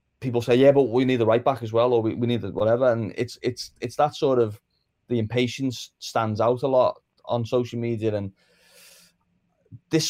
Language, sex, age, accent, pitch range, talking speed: English, male, 20-39, British, 105-130 Hz, 210 wpm